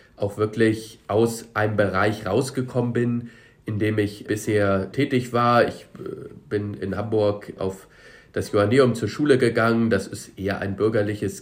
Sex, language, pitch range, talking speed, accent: male, German, 100-120 Hz, 145 wpm, German